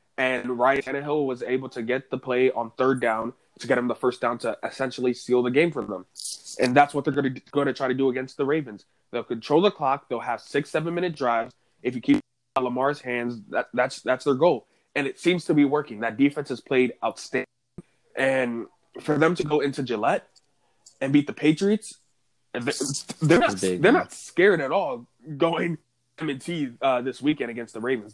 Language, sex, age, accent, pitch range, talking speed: English, male, 20-39, American, 120-145 Hz, 205 wpm